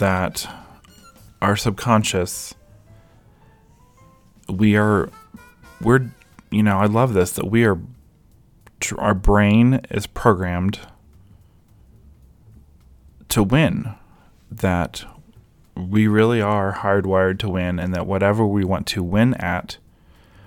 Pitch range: 90-110 Hz